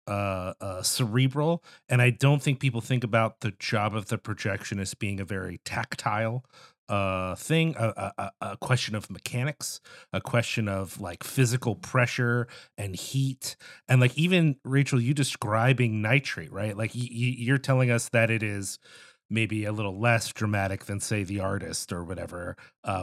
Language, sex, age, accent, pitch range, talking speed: English, male, 30-49, American, 105-140 Hz, 175 wpm